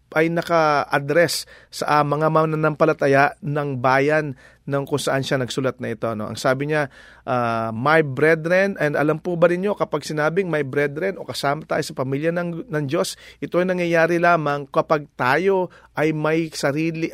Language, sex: English, male